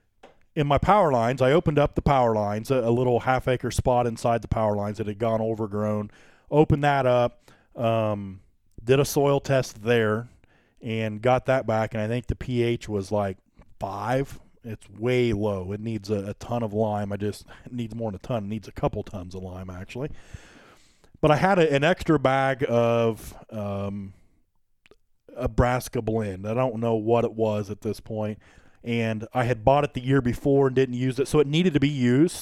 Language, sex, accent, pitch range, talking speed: English, male, American, 105-135 Hz, 200 wpm